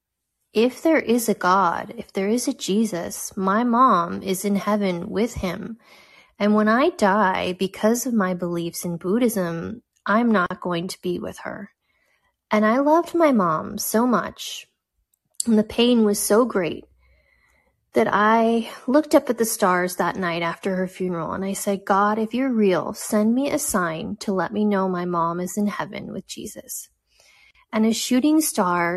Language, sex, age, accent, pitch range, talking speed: English, female, 30-49, American, 185-230 Hz, 175 wpm